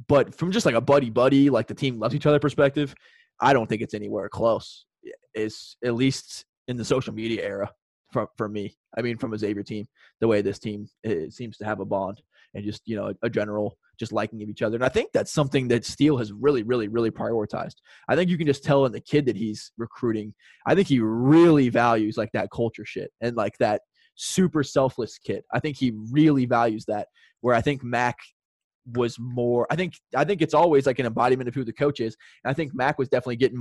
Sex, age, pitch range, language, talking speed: male, 20-39, 110-140 Hz, English, 230 wpm